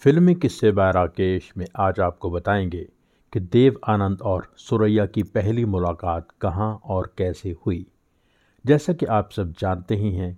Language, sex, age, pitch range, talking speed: Hindi, male, 50-69, 90-115 Hz, 150 wpm